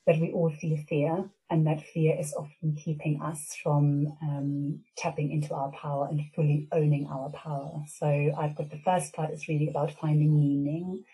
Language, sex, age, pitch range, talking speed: English, female, 30-49, 150-165 Hz, 185 wpm